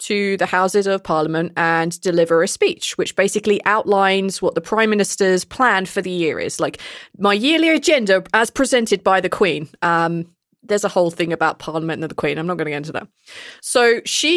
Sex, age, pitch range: female, 20-39, 175-230 Hz